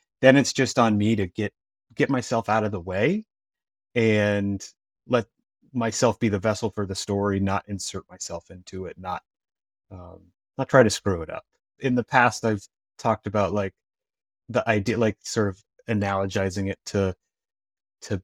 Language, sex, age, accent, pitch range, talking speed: English, male, 30-49, American, 100-115 Hz, 170 wpm